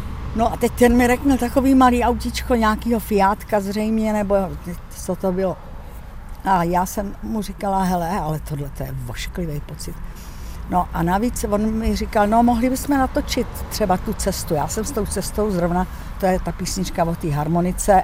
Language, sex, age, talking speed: Czech, female, 60-79, 180 wpm